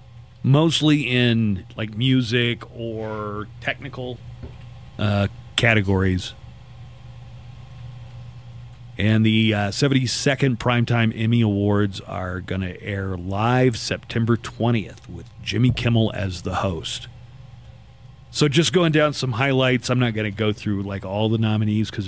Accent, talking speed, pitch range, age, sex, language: American, 120 wpm, 110-130 Hz, 40-59, male, English